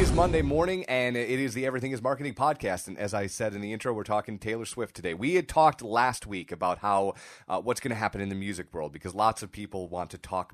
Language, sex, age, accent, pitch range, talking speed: English, male, 30-49, American, 95-120 Hz, 270 wpm